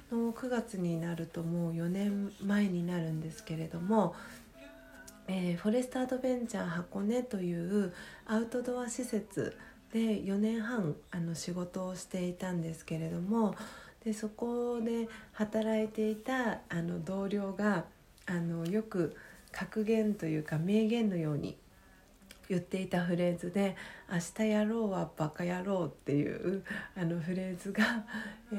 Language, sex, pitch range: Japanese, female, 170-215 Hz